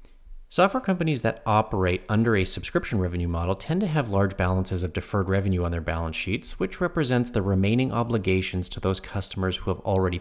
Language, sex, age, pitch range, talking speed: English, male, 30-49, 90-110 Hz, 190 wpm